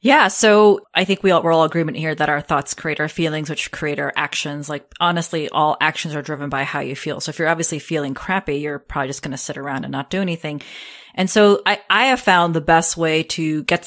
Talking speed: 255 wpm